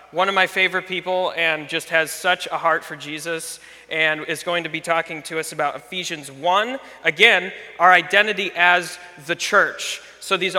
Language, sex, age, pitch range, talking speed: English, male, 30-49, 160-185 Hz, 180 wpm